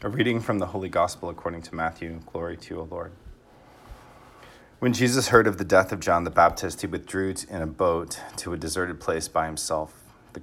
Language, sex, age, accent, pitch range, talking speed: English, male, 30-49, American, 85-115 Hz, 205 wpm